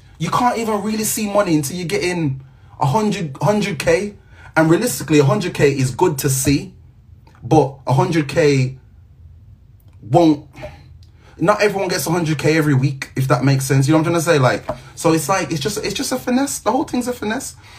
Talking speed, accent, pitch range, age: 180 wpm, British, 120-155 Hz, 30-49